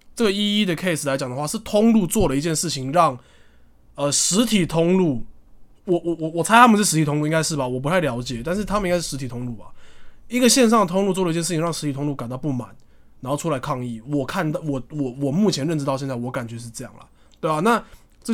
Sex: male